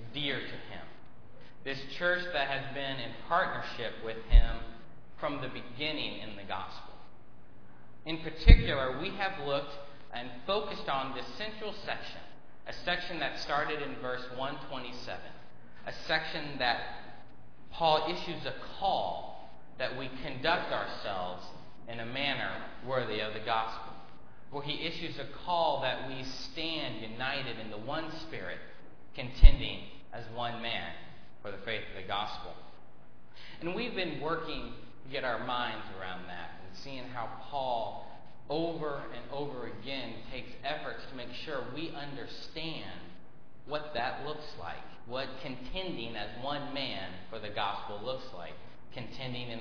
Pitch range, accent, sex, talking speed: 110-145 Hz, American, male, 145 wpm